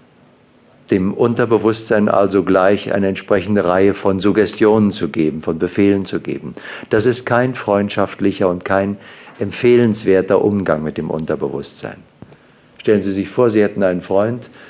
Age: 50-69